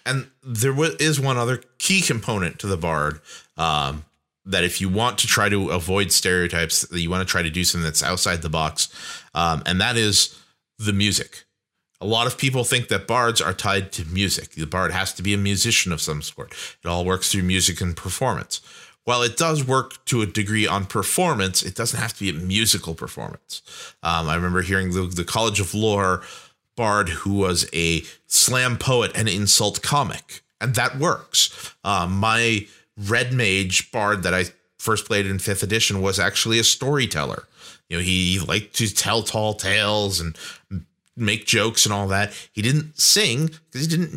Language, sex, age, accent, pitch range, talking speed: English, male, 30-49, American, 90-115 Hz, 190 wpm